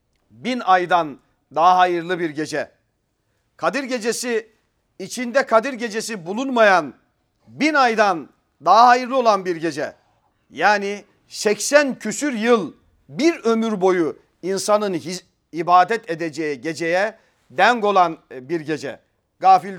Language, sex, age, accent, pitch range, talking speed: Turkish, male, 40-59, native, 165-225 Hz, 110 wpm